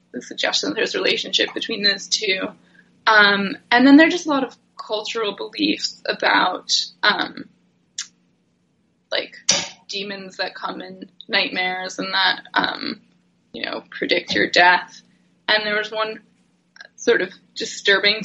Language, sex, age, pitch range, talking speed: English, female, 20-39, 200-230 Hz, 140 wpm